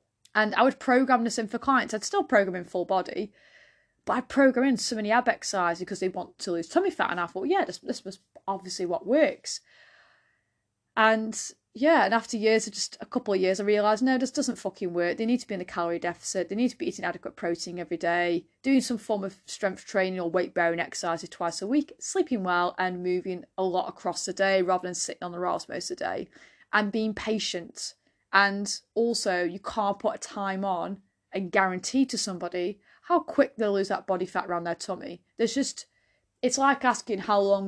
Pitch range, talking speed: 185-240 Hz, 220 wpm